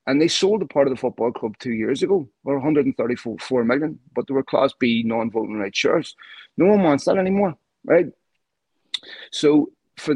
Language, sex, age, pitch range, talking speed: English, male, 30-49, 115-155 Hz, 190 wpm